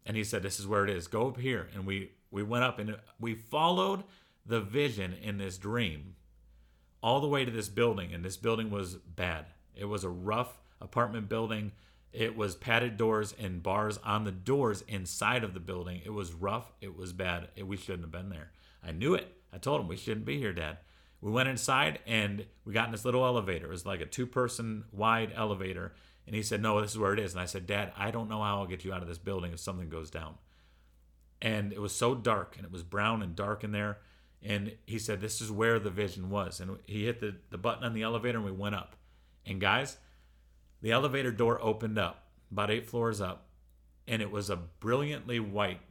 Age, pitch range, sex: 40-59, 90-115 Hz, male